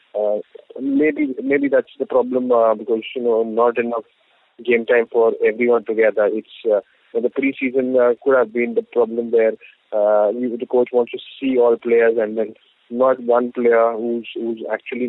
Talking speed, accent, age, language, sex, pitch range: 180 wpm, Indian, 20-39, English, male, 115-150 Hz